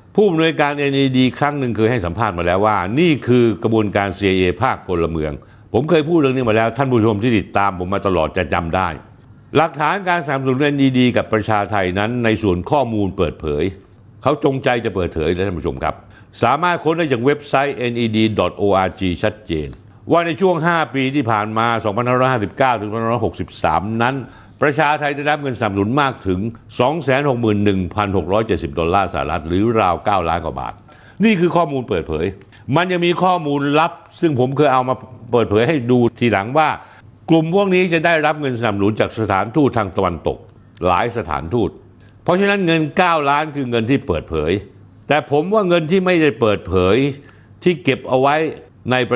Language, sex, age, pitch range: Thai, male, 60-79, 100-145 Hz